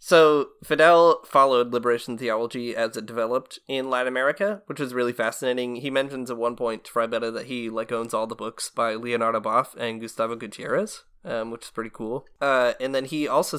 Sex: male